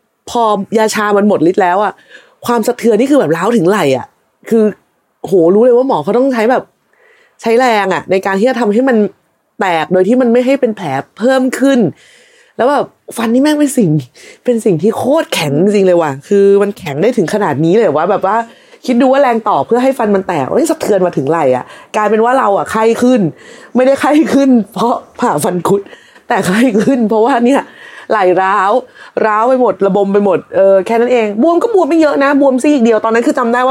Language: Thai